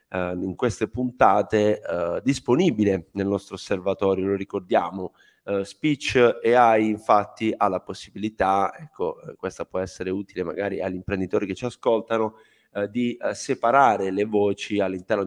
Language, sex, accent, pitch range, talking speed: Italian, male, native, 100-125 Hz, 145 wpm